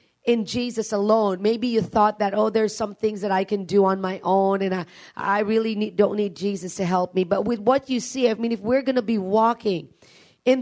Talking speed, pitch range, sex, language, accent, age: 245 wpm, 185-220 Hz, female, English, American, 40-59